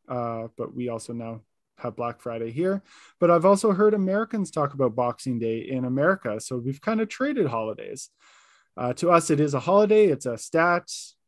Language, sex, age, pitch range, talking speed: English, male, 20-39, 135-195 Hz, 195 wpm